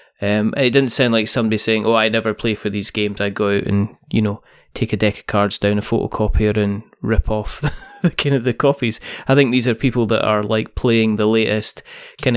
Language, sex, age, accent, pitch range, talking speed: English, male, 20-39, British, 110-135 Hz, 235 wpm